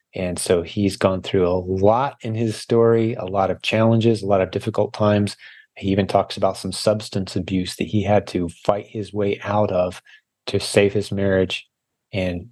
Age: 30-49